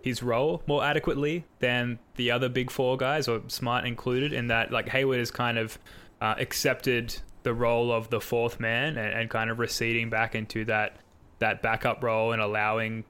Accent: Australian